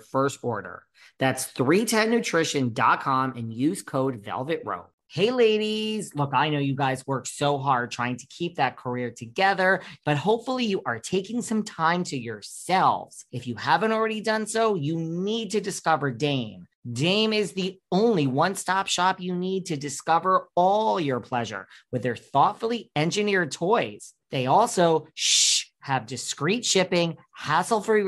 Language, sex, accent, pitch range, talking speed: English, male, American, 135-205 Hz, 145 wpm